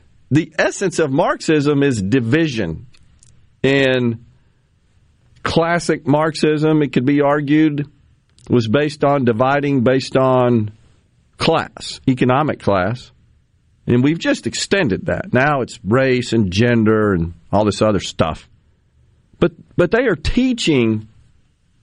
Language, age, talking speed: English, 50-69, 115 wpm